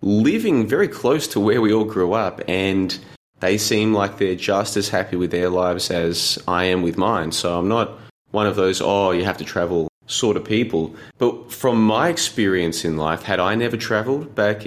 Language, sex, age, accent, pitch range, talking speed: English, male, 20-39, Australian, 90-110 Hz, 205 wpm